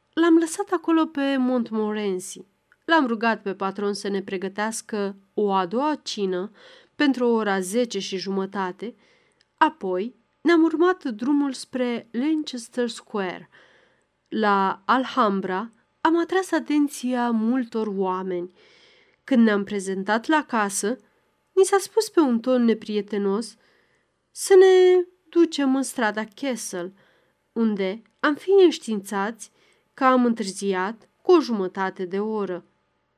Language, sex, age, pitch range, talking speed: Romanian, female, 30-49, 200-300 Hz, 120 wpm